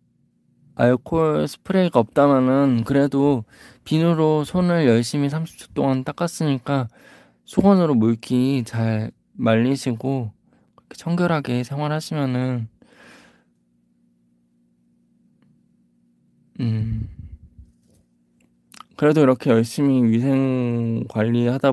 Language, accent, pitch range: Korean, native, 100-140 Hz